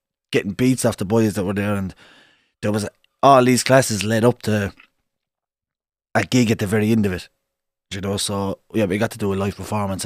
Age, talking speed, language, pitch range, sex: 20-39, 220 wpm, English, 95-110 Hz, male